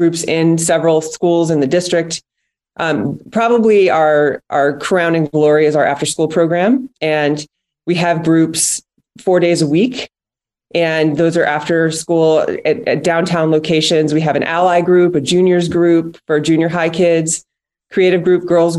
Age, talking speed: 30-49, 160 wpm